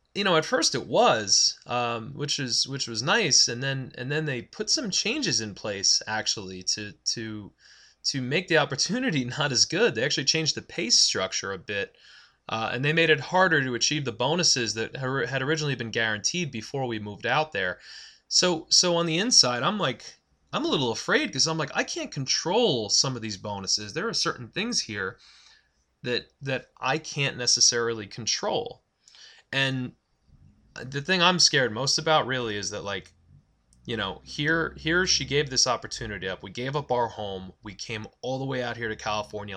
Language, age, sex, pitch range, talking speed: English, 20-39, male, 110-150 Hz, 190 wpm